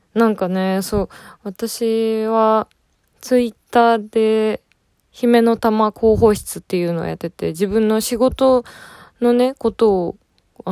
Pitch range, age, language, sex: 175-220 Hz, 20-39, Japanese, female